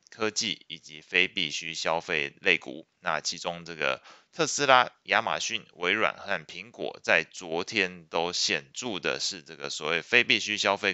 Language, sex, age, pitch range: Chinese, male, 20-39, 85-105 Hz